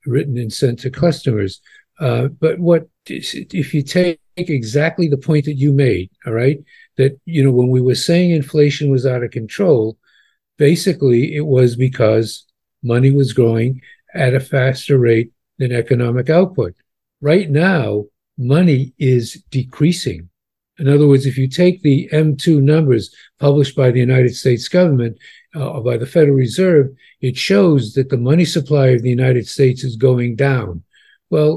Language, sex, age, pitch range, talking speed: English, male, 50-69, 125-150 Hz, 160 wpm